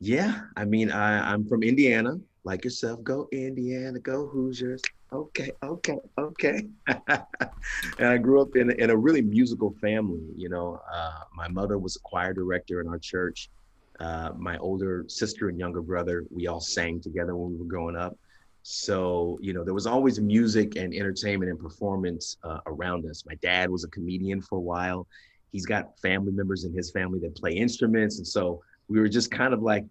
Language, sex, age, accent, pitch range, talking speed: English, male, 30-49, American, 85-105 Hz, 190 wpm